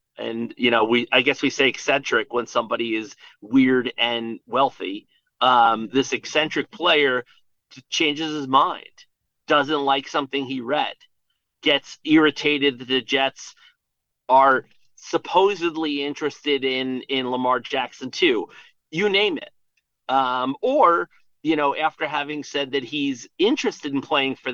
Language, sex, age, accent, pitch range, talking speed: English, male, 40-59, American, 120-150 Hz, 135 wpm